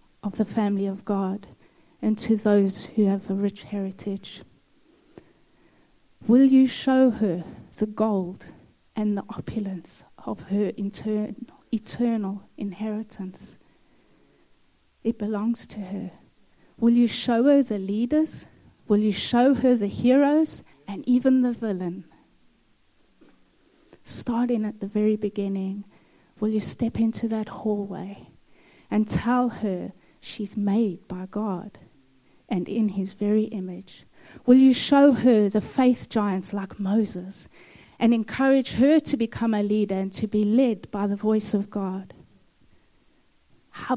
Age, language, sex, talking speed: 30-49, English, female, 130 wpm